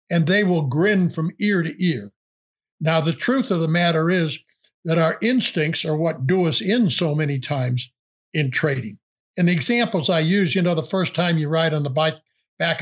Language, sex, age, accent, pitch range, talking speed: English, male, 60-79, American, 150-175 Hz, 205 wpm